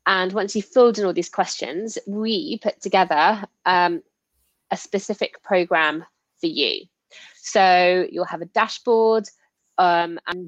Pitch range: 180-205 Hz